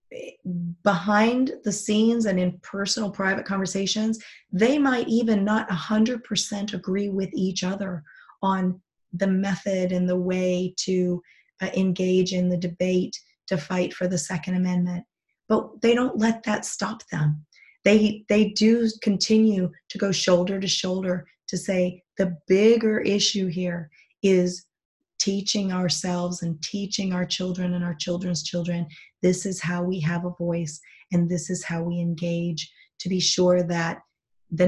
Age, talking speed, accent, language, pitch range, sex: 30-49, 150 wpm, American, English, 175-205 Hz, female